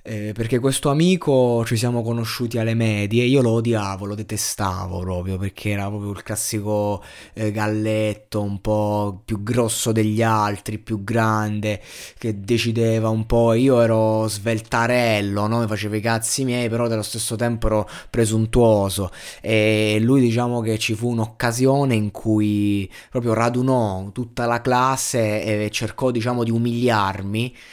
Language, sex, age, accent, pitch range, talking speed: Italian, male, 20-39, native, 105-120 Hz, 150 wpm